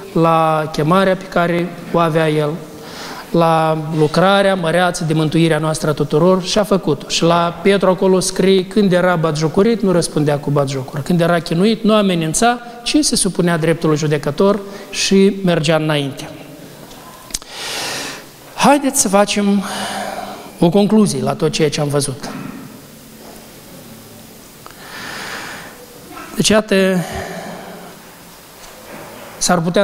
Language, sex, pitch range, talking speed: Romanian, male, 170-235 Hz, 115 wpm